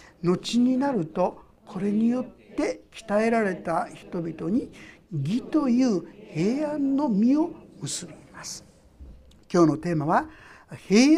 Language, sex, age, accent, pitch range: Japanese, male, 60-79, native, 170-255 Hz